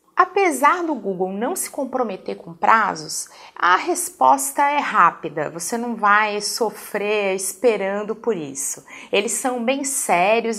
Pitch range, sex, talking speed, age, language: 205-325 Hz, female, 130 wpm, 30-49, Portuguese